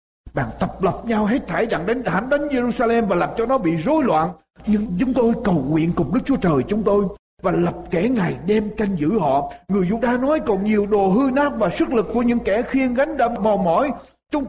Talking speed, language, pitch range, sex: 245 wpm, Vietnamese, 185-270 Hz, male